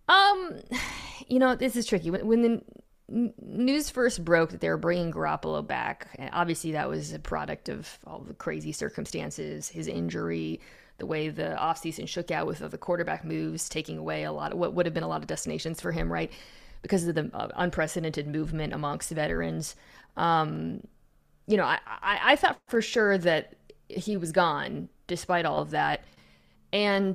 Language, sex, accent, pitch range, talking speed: English, female, American, 155-200 Hz, 190 wpm